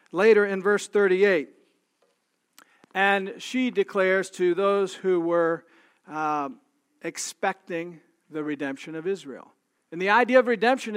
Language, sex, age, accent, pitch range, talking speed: English, male, 50-69, American, 175-230 Hz, 120 wpm